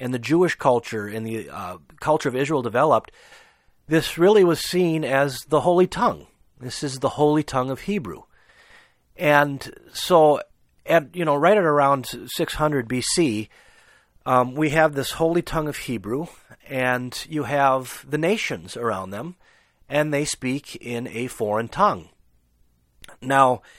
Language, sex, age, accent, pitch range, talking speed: English, male, 40-59, American, 115-150 Hz, 150 wpm